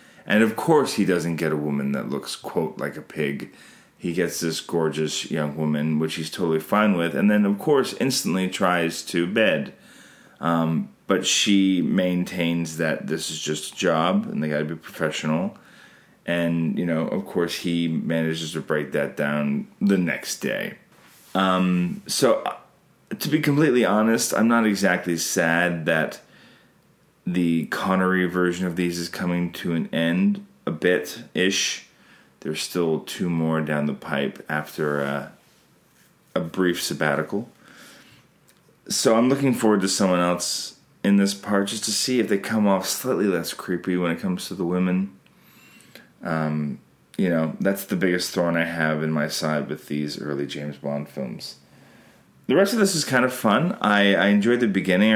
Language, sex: English, male